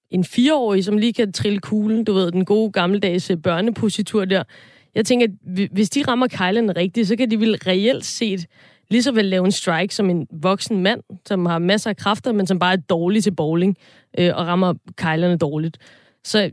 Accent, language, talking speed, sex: native, Danish, 205 wpm, female